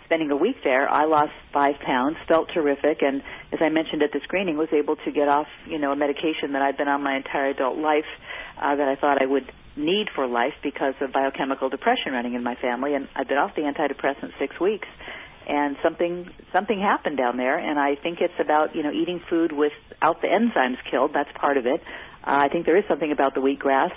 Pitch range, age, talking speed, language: 140-160 Hz, 50-69, 230 wpm, English